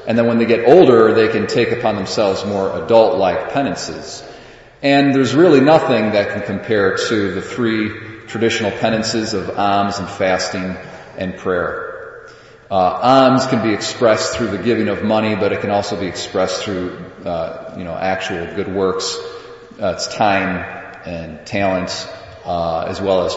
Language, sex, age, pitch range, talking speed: English, male, 40-59, 100-125 Hz, 165 wpm